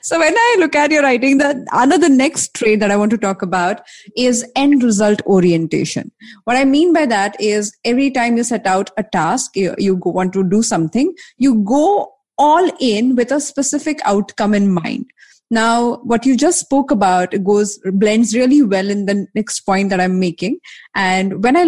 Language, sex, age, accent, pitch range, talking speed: English, female, 20-39, Indian, 195-250 Hz, 200 wpm